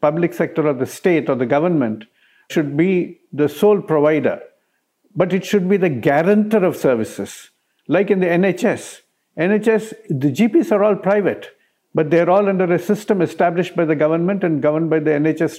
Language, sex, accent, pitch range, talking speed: English, male, Indian, 150-190 Hz, 175 wpm